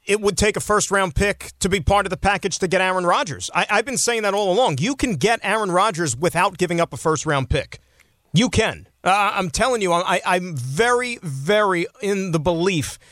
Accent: American